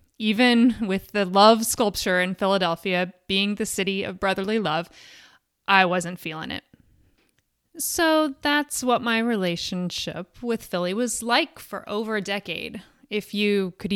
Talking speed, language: 140 wpm, English